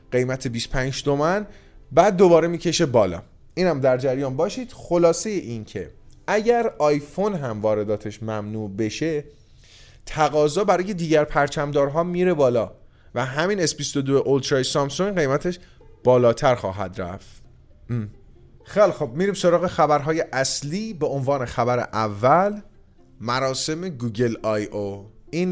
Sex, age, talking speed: male, 30-49, 120 wpm